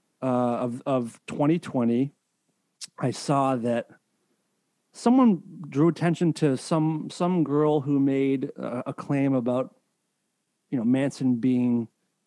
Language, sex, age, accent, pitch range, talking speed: English, male, 40-59, American, 125-155 Hz, 110 wpm